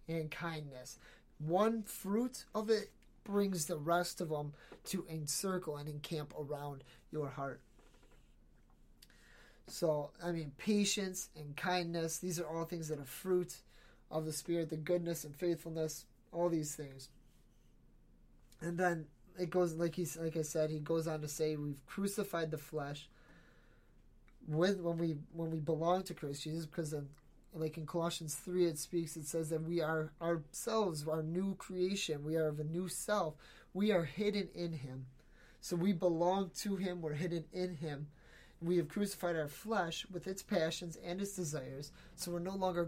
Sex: male